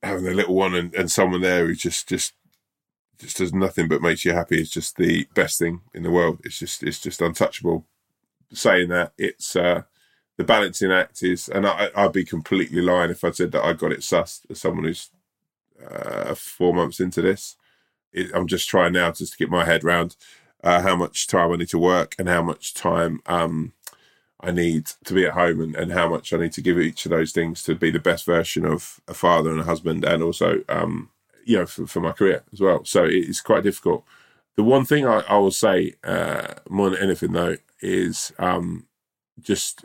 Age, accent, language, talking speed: 20-39, British, English, 220 wpm